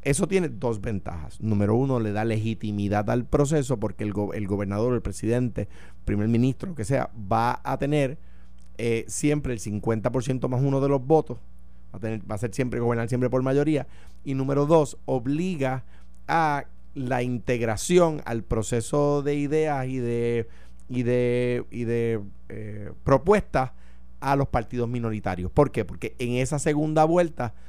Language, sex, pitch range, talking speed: Spanish, male, 105-145 Hz, 165 wpm